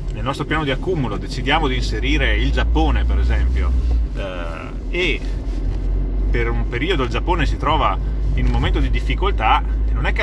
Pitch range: 115-140 Hz